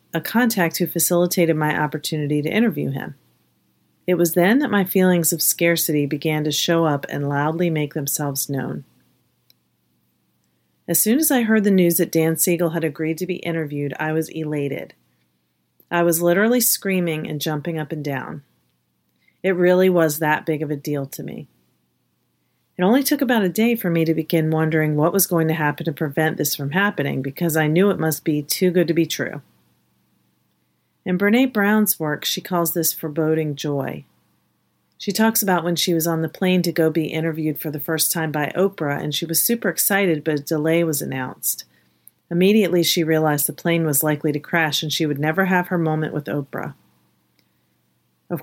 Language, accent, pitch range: English, American, 145-180 Hz